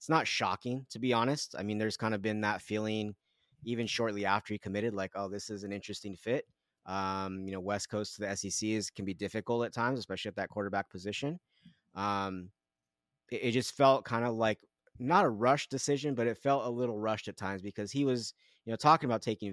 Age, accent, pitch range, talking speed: 30-49, American, 100-115 Hz, 220 wpm